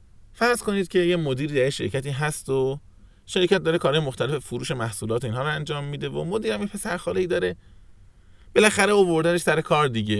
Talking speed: 175 wpm